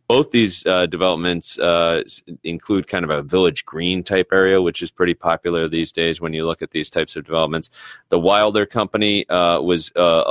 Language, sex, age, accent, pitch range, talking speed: English, male, 30-49, American, 80-95 Hz, 190 wpm